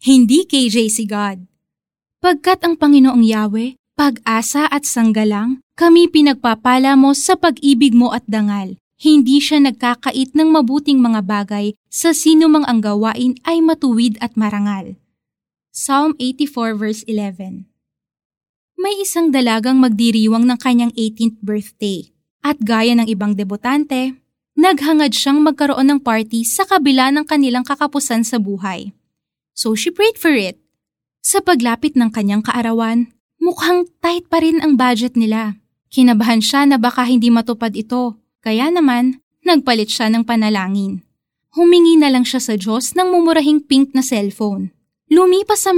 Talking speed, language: 140 wpm, Filipino